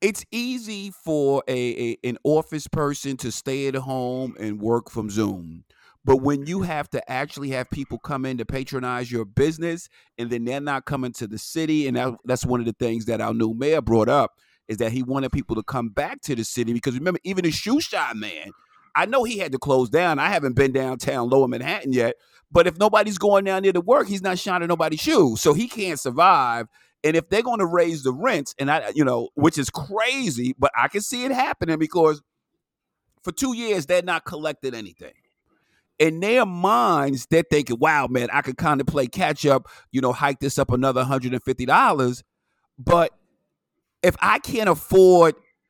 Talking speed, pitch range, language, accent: 205 wpm, 130-175 Hz, English, American